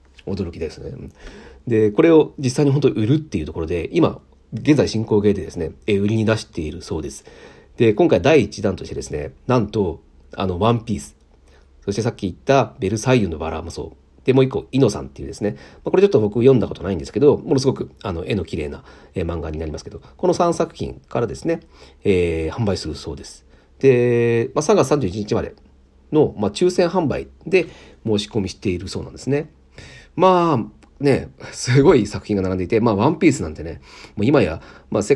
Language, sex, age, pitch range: Japanese, male, 40-59, 75-110 Hz